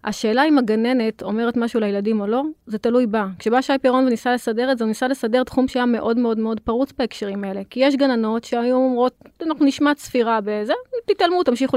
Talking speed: 200 wpm